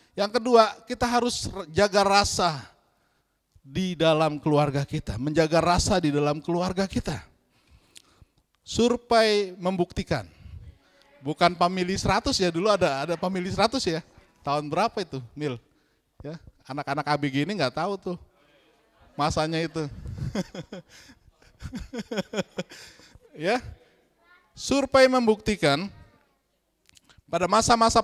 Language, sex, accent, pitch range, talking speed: Indonesian, male, native, 145-190 Hz, 100 wpm